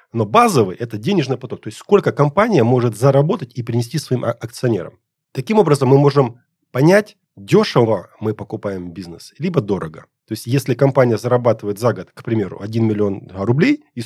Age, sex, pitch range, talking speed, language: 30-49, male, 110-150 Hz, 165 wpm, Russian